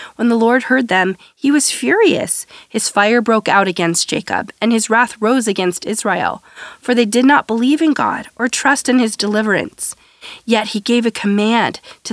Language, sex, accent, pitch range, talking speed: English, female, American, 195-245 Hz, 190 wpm